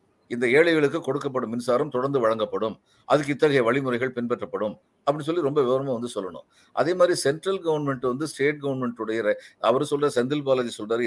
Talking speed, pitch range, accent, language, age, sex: 150 wpm, 120-155 Hz, native, Tamil, 50-69, male